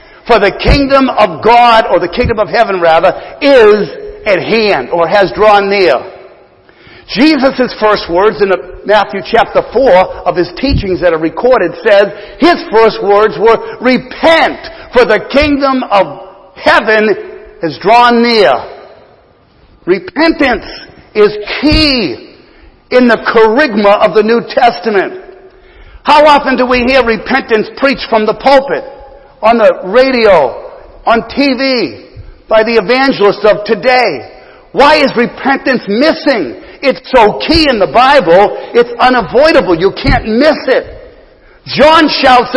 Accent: American